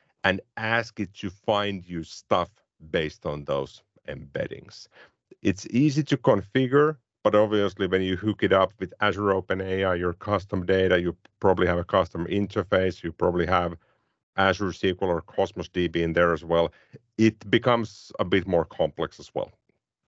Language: English